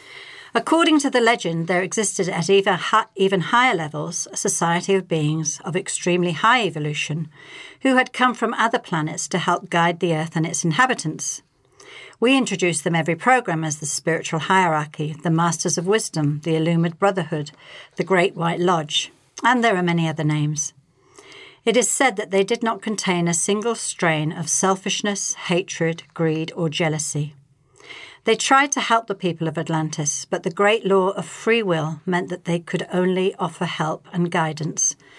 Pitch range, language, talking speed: 160-205 Hz, English, 170 wpm